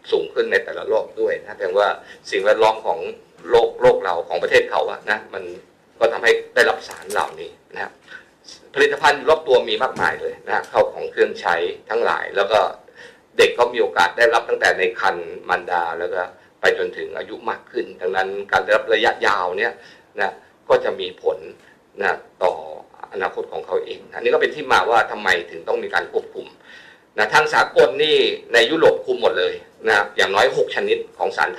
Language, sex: Thai, male